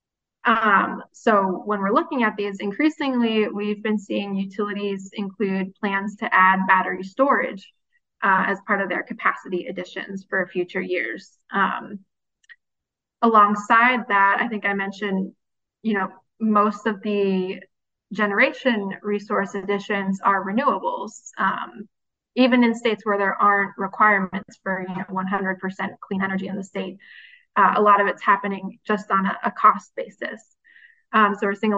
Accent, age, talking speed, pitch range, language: American, 20-39, 145 wpm, 195-220 Hz, English